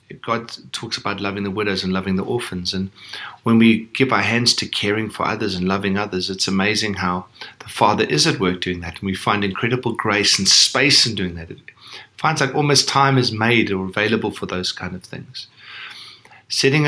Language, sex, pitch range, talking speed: English, male, 95-120 Hz, 205 wpm